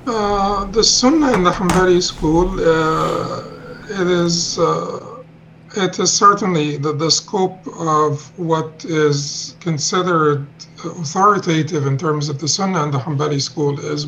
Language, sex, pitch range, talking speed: English, male, 160-180 Hz, 135 wpm